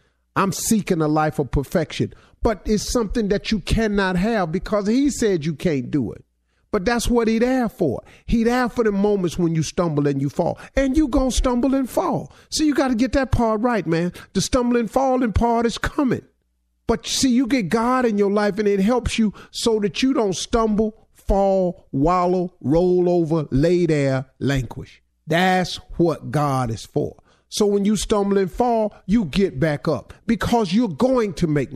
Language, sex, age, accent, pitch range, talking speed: English, male, 50-69, American, 140-220 Hz, 190 wpm